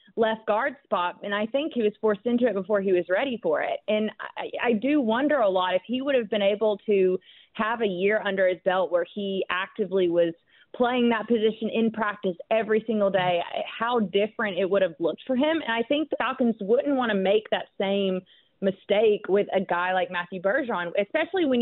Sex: female